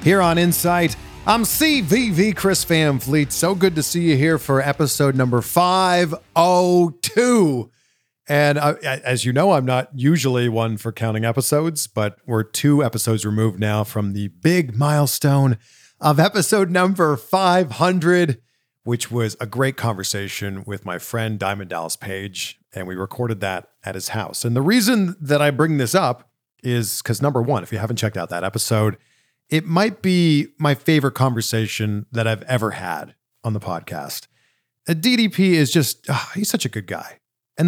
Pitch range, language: 110-155 Hz, English